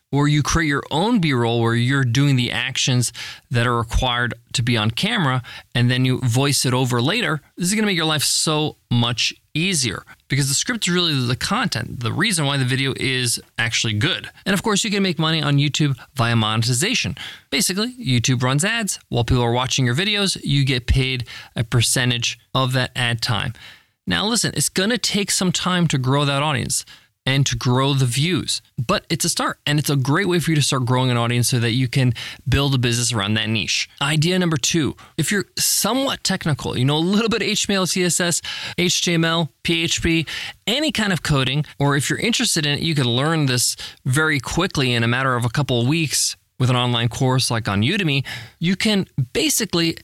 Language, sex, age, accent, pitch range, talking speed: English, male, 20-39, American, 125-165 Hz, 210 wpm